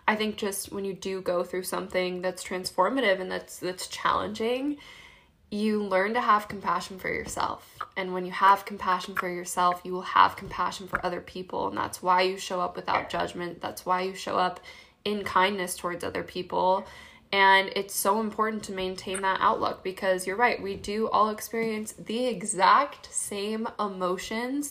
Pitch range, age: 185-215 Hz, 10-29